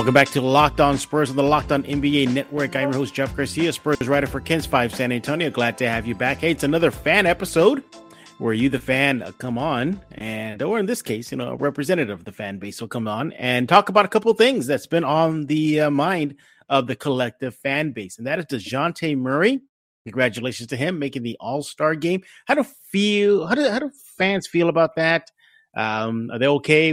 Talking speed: 225 wpm